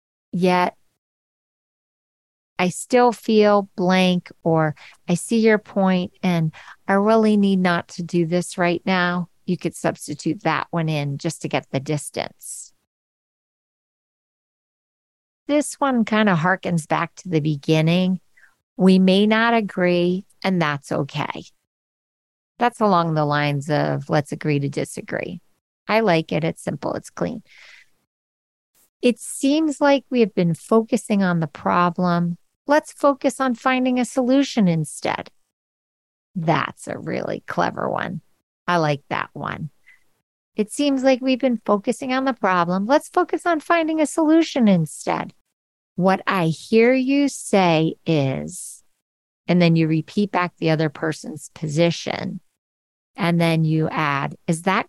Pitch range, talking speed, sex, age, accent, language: 160-235 Hz, 140 wpm, female, 40-59, American, English